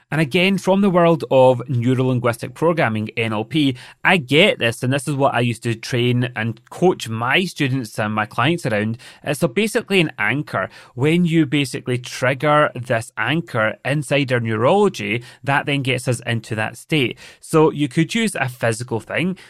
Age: 30-49